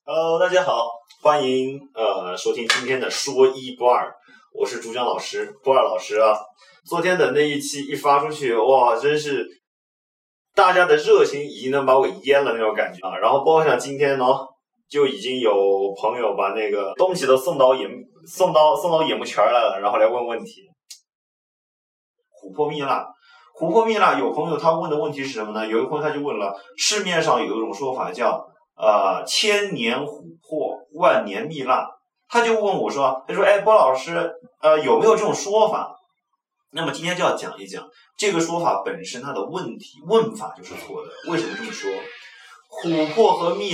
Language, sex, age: Chinese, male, 20-39